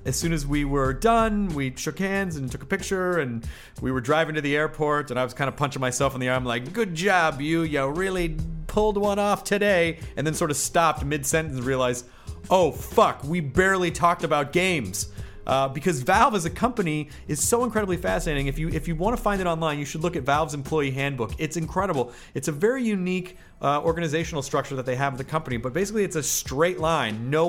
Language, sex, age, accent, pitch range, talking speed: English, male, 30-49, American, 135-185 Hz, 225 wpm